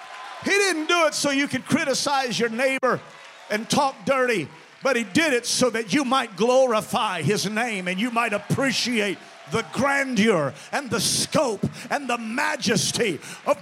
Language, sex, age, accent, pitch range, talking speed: English, male, 40-59, American, 240-335 Hz, 165 wpm